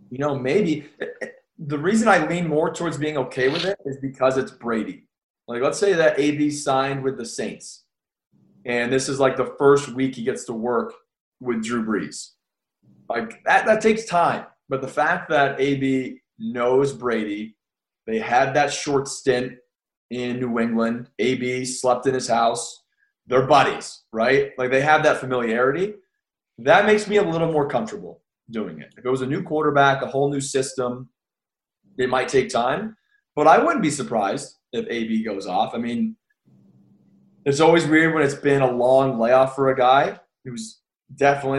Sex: male